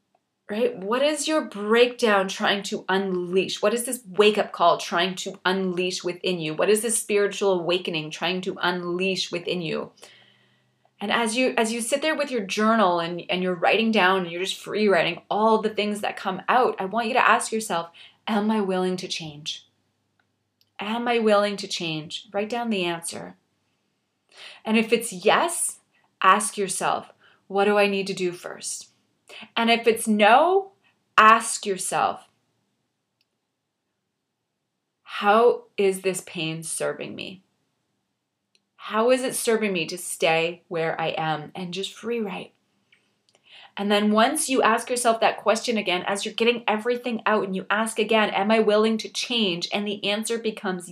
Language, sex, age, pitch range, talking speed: English, female, 20-39, 185-225 Hz, 165 wpm